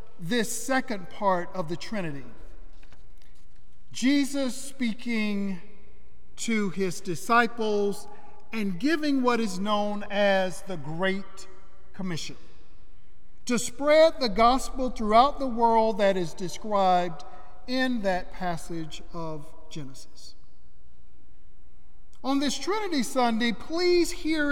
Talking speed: 100 wpm